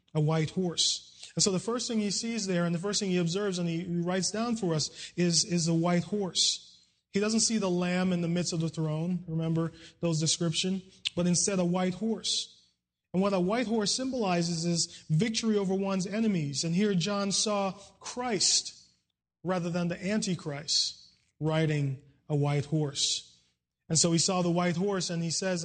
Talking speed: 190 wpm